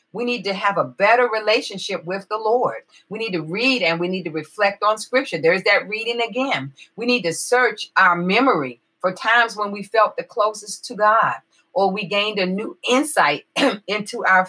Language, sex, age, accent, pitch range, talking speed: English, female, 40-59, American, 170-220 Hz, 200 wpm